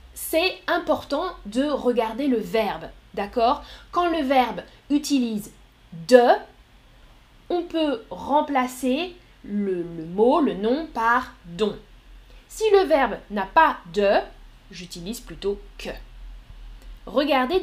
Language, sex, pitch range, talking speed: French, female, 205-295 Hz, 110 wpm